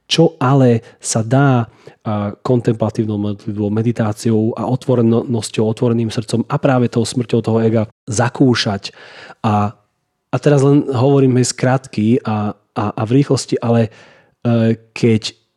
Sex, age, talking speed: male, 30-49, 120 wpm